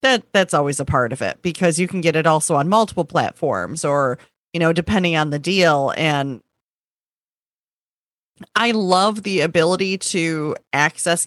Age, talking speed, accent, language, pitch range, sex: 30-49, 160 wpm, American, English, 150-175 Hz, female